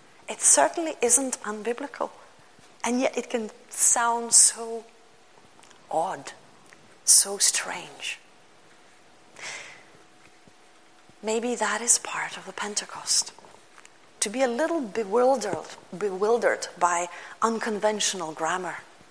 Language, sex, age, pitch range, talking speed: English, female, 30-49, 205-275 Hz, 90 wpm